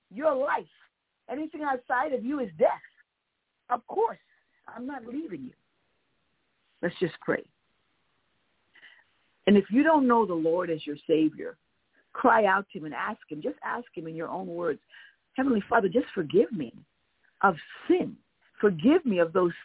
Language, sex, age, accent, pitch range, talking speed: English, female, 50-69, American, 165-250 Hz, 160 wpm